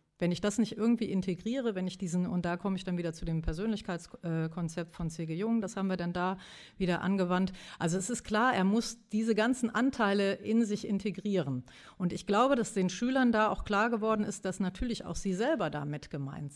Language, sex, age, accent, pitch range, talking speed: German, female, 40-59, German, 175-215 Hz, 210 wpm